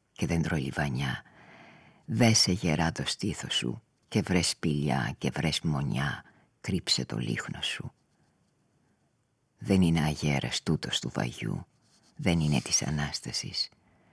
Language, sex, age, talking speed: Greek, female, 50-69, 125 wpm